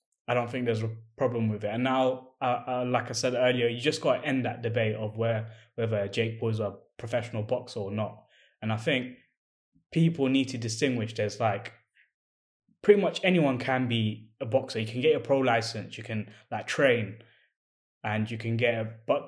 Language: English